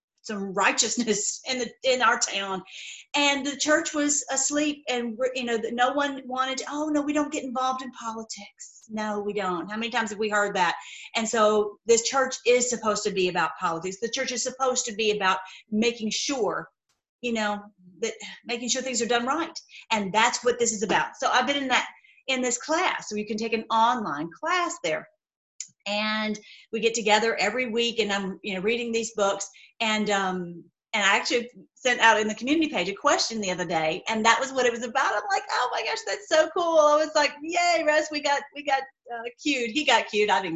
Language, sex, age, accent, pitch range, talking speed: English, female, 40-59, American, 210-265 Hz, 215 wpm